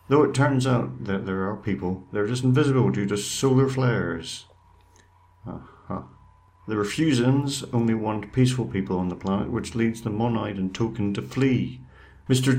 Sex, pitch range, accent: male, 90-120 Hz, British